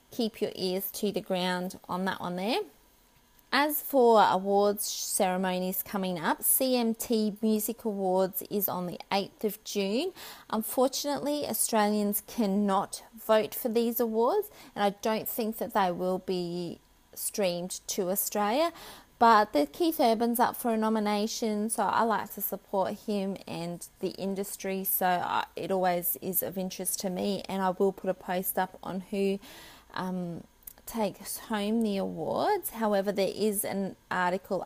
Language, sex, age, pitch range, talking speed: English, female, 20-39, 185-230 Hz, 150 wpm